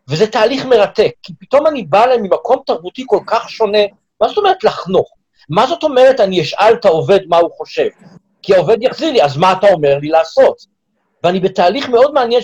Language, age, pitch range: Hebrew, 50-69, 180-240 Hz